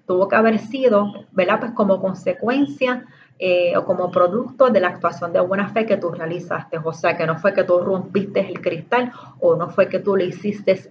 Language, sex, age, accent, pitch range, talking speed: Spanish, female, 30-49, American, 175-215 Hz, 210 wpm